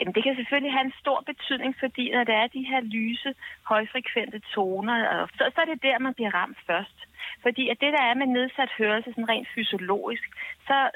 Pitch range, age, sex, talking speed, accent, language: 205-270 Hz, 30-49, female, 205 wpm, native, Danish